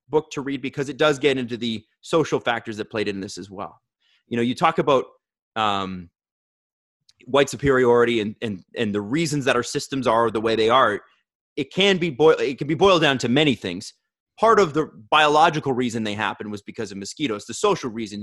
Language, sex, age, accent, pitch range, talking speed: English, male, 30-49, American, 120-155 Hz, 210 wpm